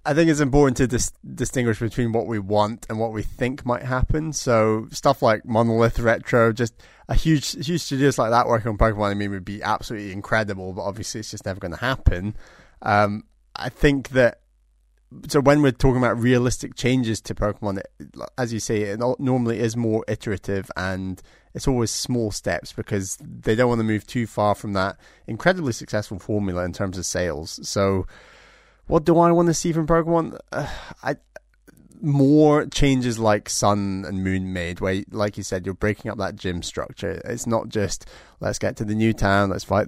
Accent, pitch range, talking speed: British, 100-130 Hz, 195 wpm